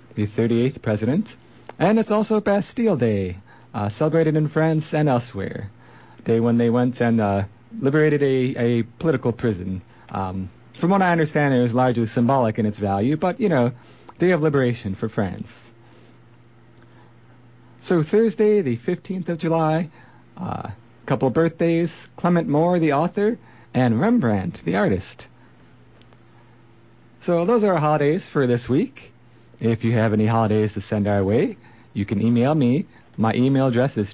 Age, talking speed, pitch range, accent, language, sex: 40-59, 155 wpm, 115-155 Hz, American, English, male